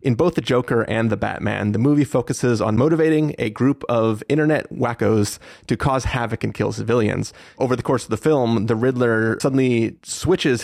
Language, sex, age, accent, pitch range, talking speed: English, male, 30-49, American, 110-130 Hz, 185 wpm